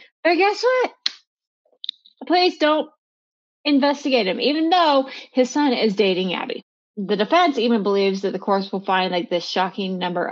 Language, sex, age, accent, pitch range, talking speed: English, female, 20-39, American, 190-255 Hz, 155 wpm